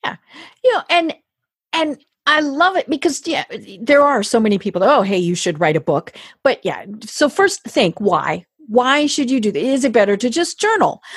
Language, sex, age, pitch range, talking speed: English, female, 40-59, 205-300 Hz, 215 wpm